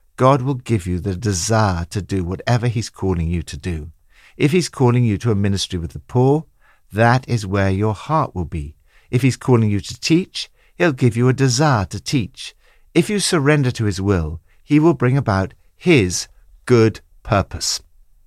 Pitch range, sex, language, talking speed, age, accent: 90-130 Hz, male, English, 185 wpm, 60-79, British